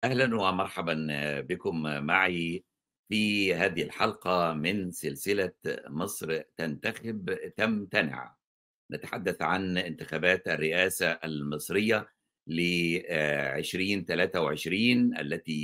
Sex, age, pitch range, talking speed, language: male, 60-79, 85-105 Hz, 75 wpm, Arabic